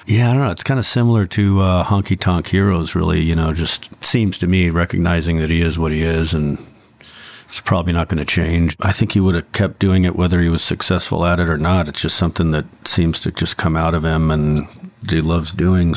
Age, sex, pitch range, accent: 50-69, male, 85-100 Hz, American